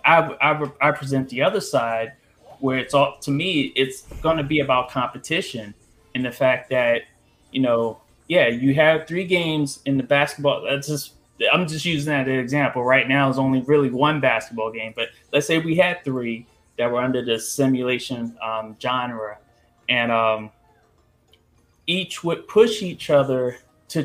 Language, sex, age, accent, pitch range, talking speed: English, male, 20-39, American, 125-150 Hz, 175 wpm